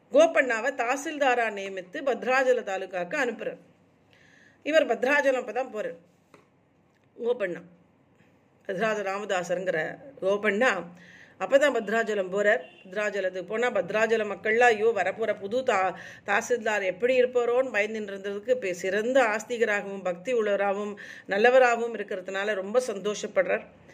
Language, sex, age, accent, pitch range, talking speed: Tamil, female, 40-59, native, 190-245 Hz, 90 wpm